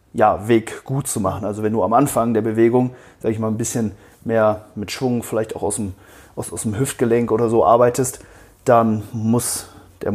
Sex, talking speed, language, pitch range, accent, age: male, 200 wpm, German, 100-115 Hz, German, 30-49